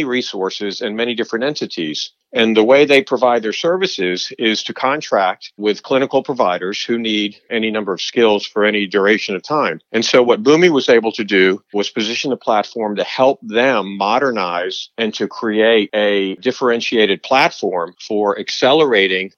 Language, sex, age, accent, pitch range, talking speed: English, male, 50-69, American, 100-120 Hz, 165 wpm